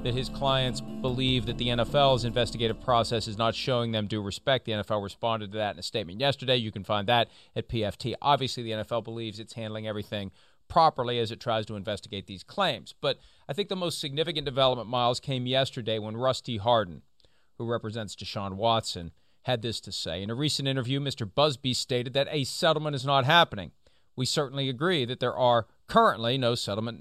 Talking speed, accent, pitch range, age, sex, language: 195 wpm, American, 110-150 Hz, 40-59, male, English